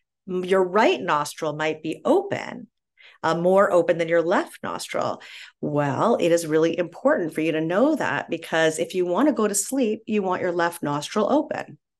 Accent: American